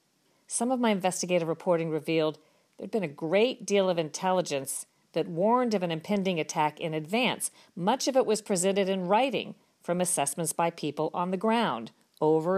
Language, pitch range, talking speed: English, 160-200 Hz, 175 wpm